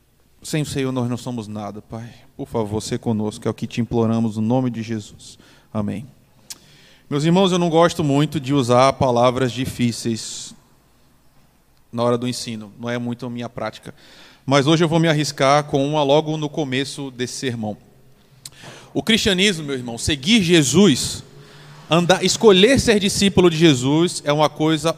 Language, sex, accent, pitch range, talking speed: Portuguese, male, Brazilian, 125-185 Hz, 170 wpm